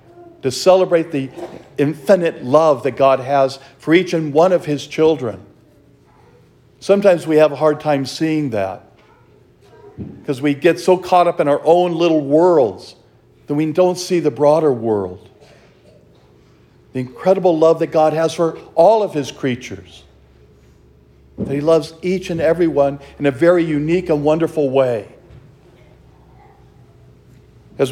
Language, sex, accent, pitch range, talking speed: English, male, American, 120-170 Hz, 140 wpm